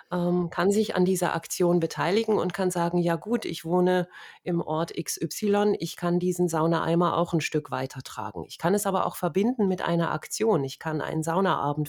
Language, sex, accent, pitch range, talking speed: German, female, German, 145-180 Hz, 185 wpm